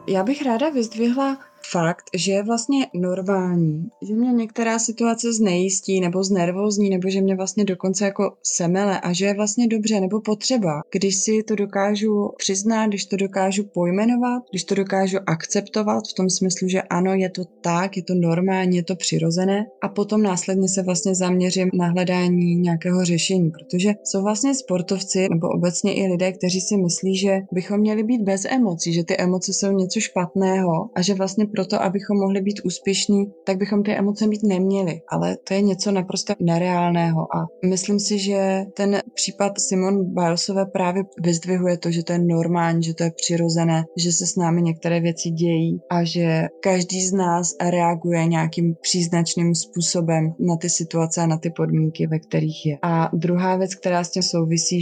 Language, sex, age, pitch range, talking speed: Czech, female, 20-39, 170-200 Hz, 175 wpm